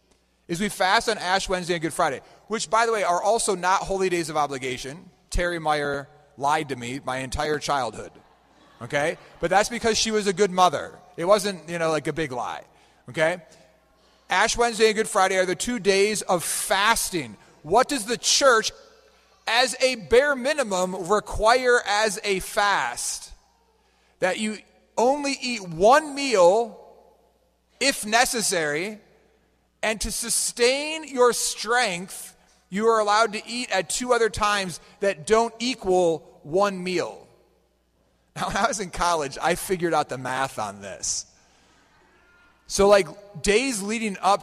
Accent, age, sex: American, 30-49, male